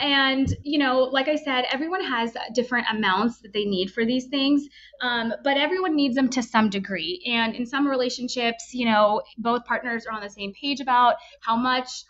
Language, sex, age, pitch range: English, female, 20-39, 210-255 Hz